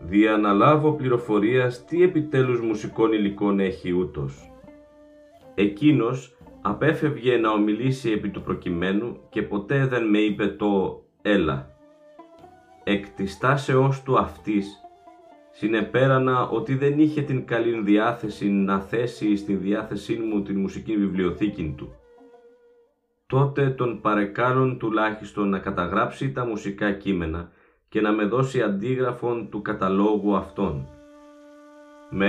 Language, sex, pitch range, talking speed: Greek, male, 105-155 Hz, 110 wpm